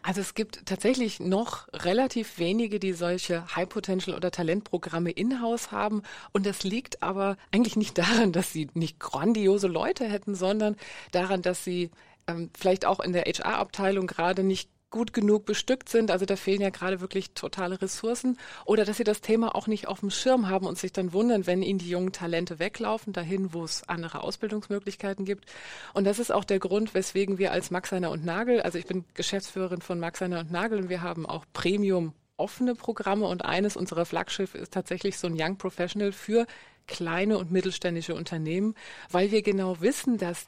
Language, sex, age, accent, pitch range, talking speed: German, female, 30-49, German, 175-210 Hz, 185 wpm